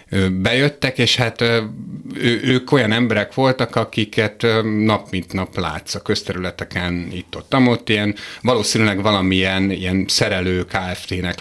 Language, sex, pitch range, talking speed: Hungarian, male, 95-115 Hz, 125 wpm